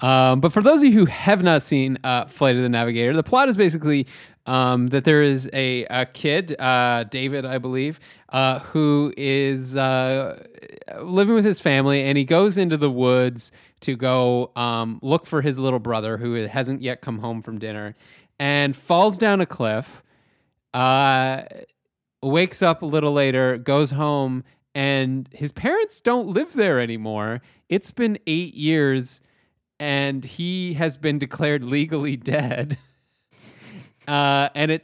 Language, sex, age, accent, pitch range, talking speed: English, male, 30-49, American, 125-150 Hz, 160 wpm